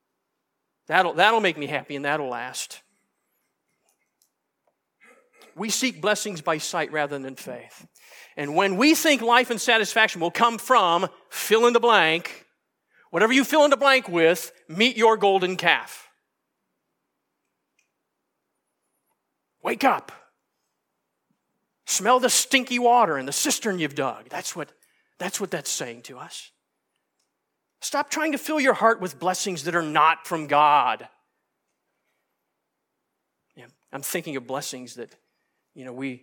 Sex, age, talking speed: male, 40-59, 130 wpm